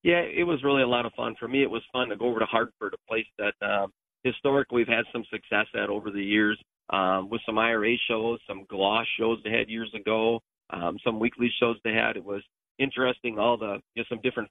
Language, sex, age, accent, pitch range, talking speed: English, male, 40-59, American, 115-145 Hz, 240 wpm